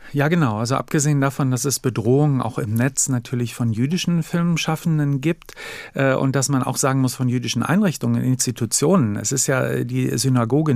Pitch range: 120-150 Hz